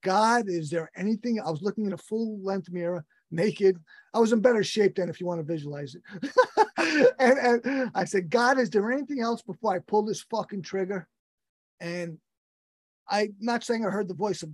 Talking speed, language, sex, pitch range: 200 wpm, English, male, 170-215 Hz